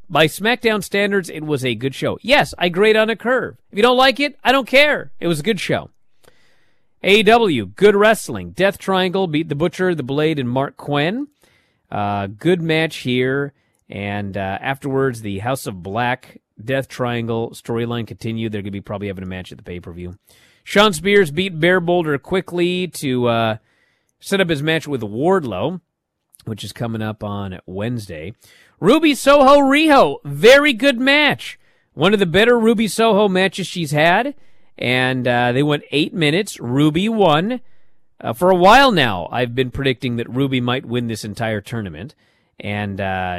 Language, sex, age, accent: English, male, 40-59, American